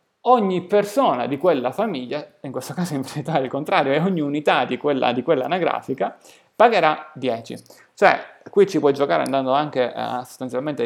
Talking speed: 175 wpm